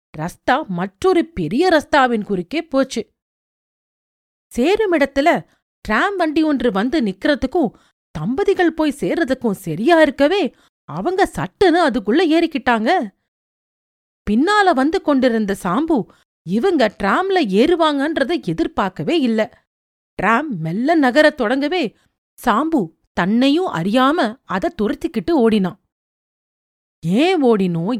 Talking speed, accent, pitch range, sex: 90 wpm, native, 215-320 Hz, female